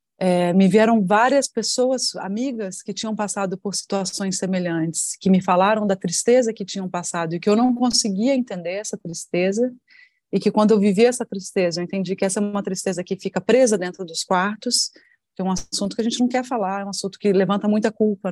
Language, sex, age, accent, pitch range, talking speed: Portuguese, female, 30-49, Brazilian, 185-235 Hz, 215 wpm